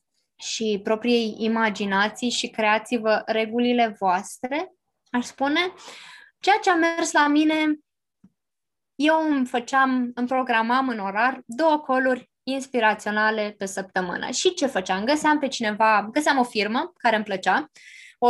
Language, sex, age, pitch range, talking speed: Romanian, female, 20-39, 225-290 Hz, 130 wpm